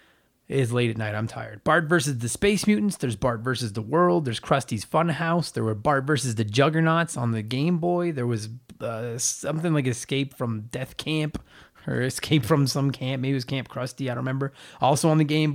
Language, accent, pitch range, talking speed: English, American, 120-160 Hz, 210 wpm